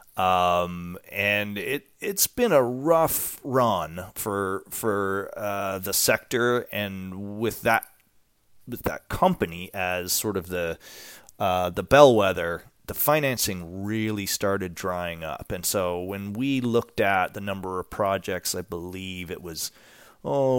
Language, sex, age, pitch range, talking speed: English, male, 30-49, 90-115 Hz, 135 wpm